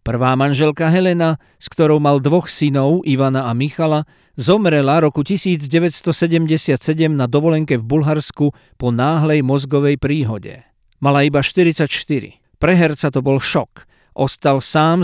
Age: 50-69